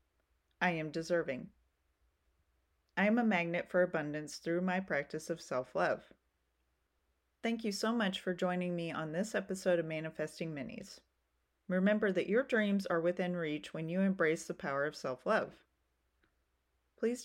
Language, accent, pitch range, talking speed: English, American, 150-195 Hz, 145 wpm